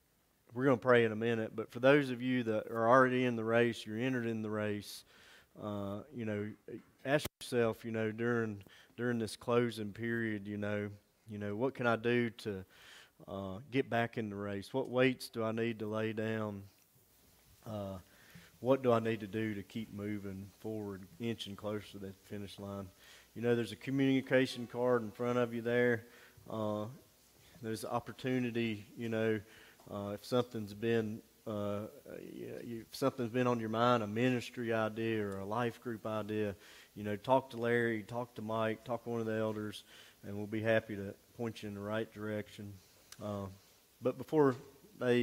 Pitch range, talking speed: 105-120 Hz, 185 wpm